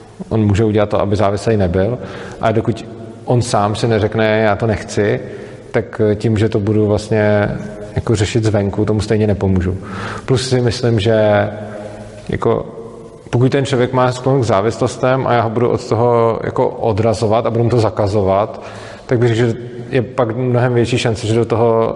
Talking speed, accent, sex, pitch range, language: 180 wpm, native, male, 105-115 Hz, Czech